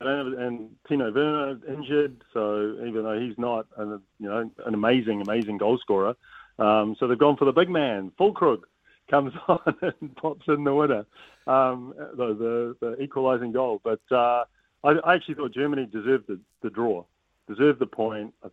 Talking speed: 180 wpm